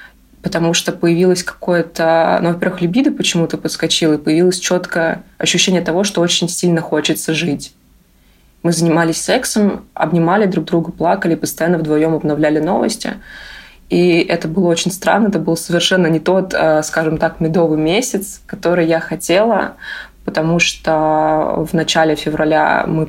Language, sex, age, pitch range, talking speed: Russian, female, 20-39, 155-180 Hz, 140 wpm